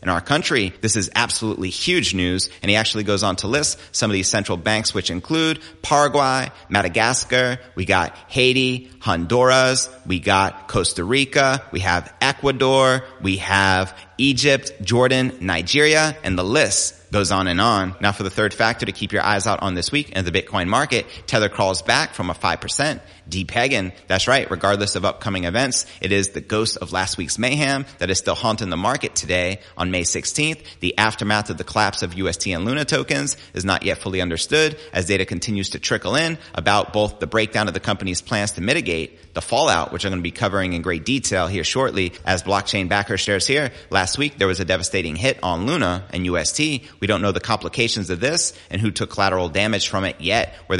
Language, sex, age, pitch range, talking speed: English, male, 30-49, 90-120 Hz, 205 wpm